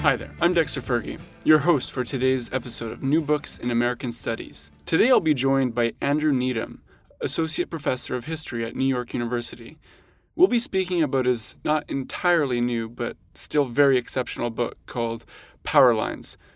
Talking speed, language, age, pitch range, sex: 170 wpm, English, 20-39, 120-155 Hz, male